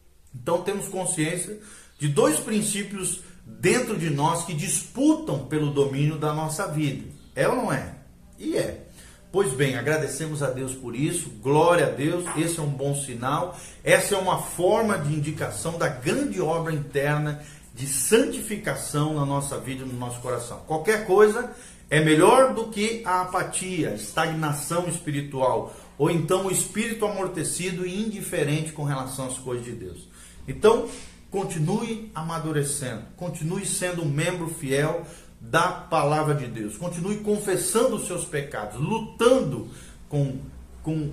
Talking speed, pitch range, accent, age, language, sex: 140 wpm, 135-185 Hz, Brazilian, 40-59, Portuguese, male